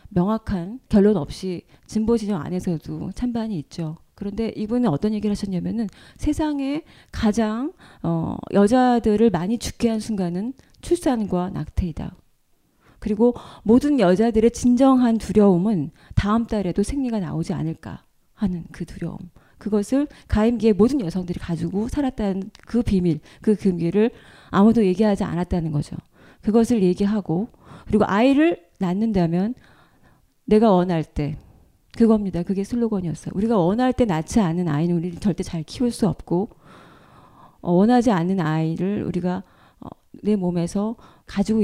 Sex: female